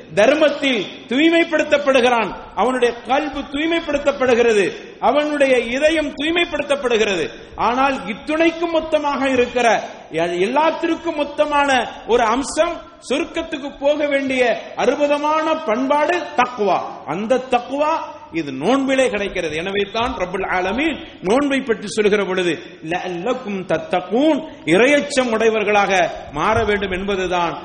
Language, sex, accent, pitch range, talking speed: English, male, Indian, 170-280 Hz, 100 wpm